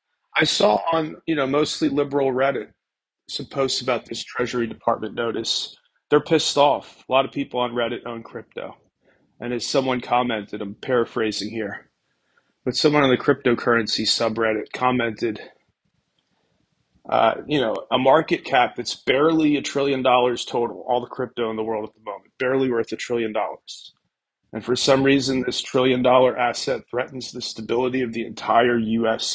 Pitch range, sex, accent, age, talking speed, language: 110-130 Hz, male, American, 30-49, 165 wpm, English